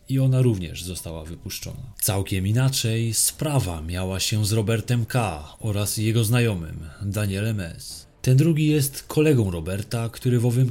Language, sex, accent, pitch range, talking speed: Polish, male, native, 95-130 Hz, 145 wpm